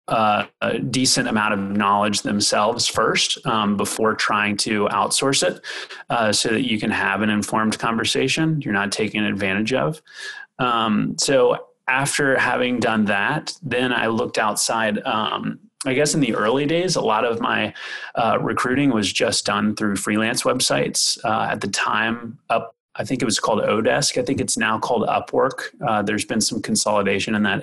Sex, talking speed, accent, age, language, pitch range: male, 175 wpm, American, 30-49, English, 105-150 Hz